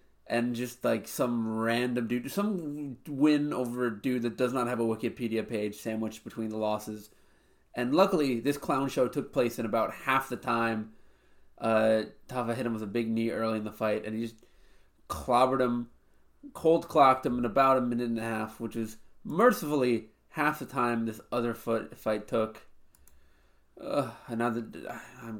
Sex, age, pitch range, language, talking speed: male, 20-39, 110-145 Hz, English, 175 wpm